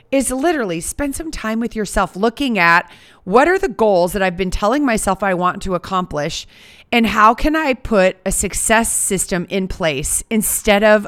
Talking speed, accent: 185 wpm, American